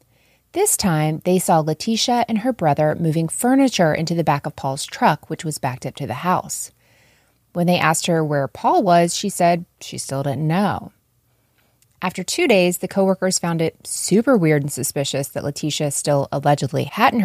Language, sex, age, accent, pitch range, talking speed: English, female, 20-39, American, 155-210 Hz, 180 wpm